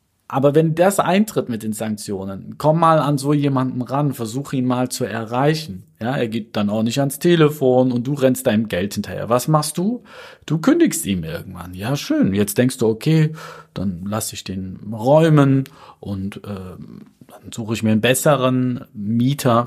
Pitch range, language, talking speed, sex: 105-140 Hz, German, 175 wpm, male